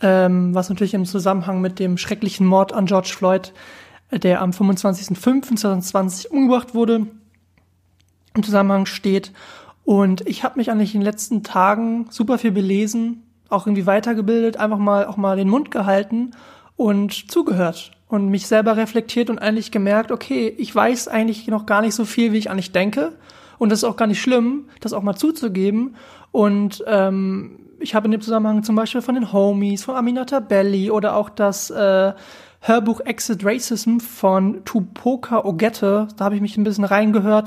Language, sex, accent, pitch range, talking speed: German, male, German, 195-230 Hz, 170 wpm